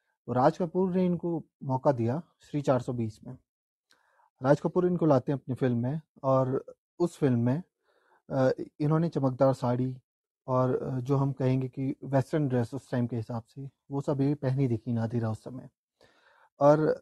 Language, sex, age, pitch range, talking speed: Hindi, male, 30-49, 125-170 Hz, 160 wpm